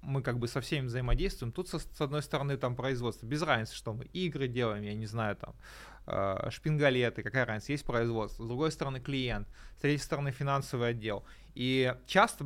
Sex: male